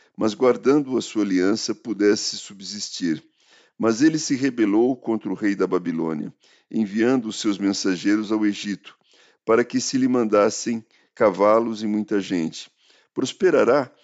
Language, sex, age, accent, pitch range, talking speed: Portuguese, male, 50-69, Brazilian, 100-140 Hz, 135 wpm